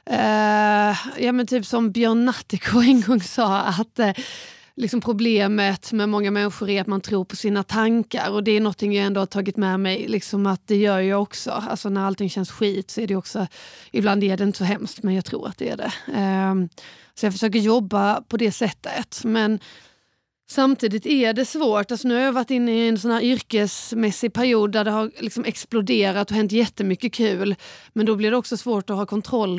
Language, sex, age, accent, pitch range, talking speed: Swedish, female, 30-49, native, 195-230 Hz, 215 wpm